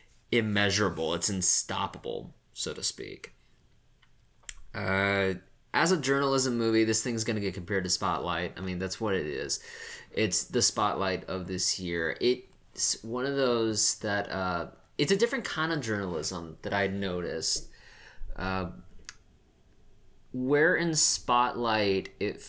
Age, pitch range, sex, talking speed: 20-39, 95-110 Hz, male, 135 wpm